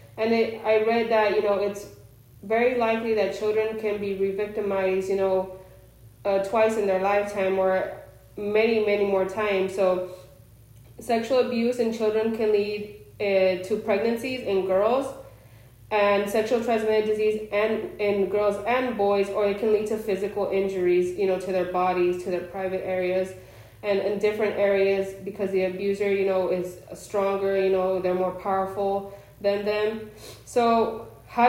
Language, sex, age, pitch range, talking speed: English, female, 20-39, 190-225 Hz, 160 wpm